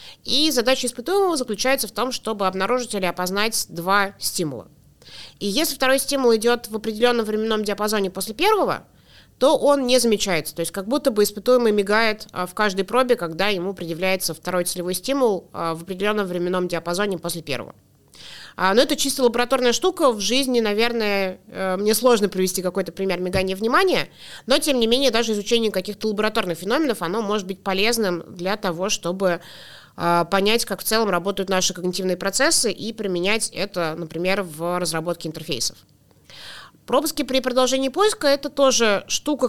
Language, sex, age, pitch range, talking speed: Russian, female, 30-49, 185-245 Hz, 155 wpm